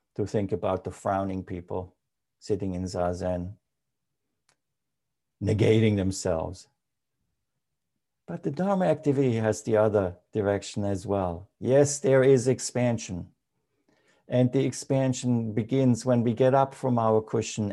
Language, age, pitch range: English, 50-69, 105-130 Hz